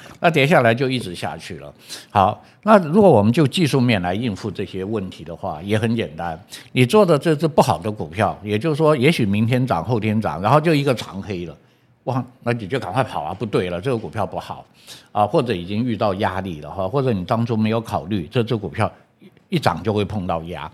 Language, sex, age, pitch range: Chinese, male, 60-79, 100-135 Hz